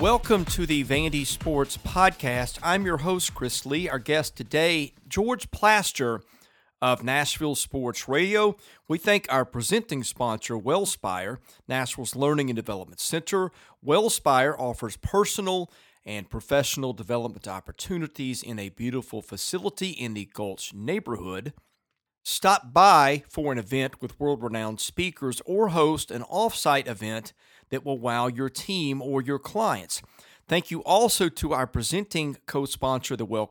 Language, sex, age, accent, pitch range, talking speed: English, male, 40-59, American, 120-155 Hz, 140 wpm